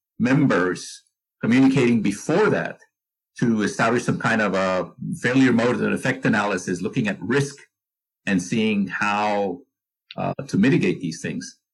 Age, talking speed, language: 50-69, 135 wpm, English